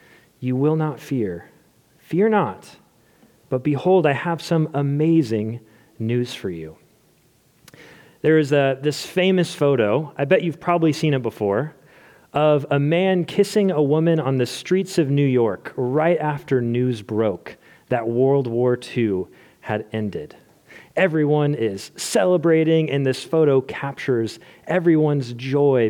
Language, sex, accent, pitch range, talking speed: English, male, American, 130-180 Hz, 135 wpm